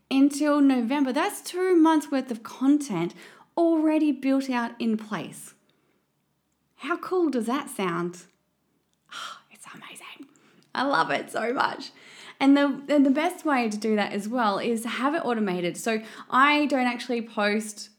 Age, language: 20-39, English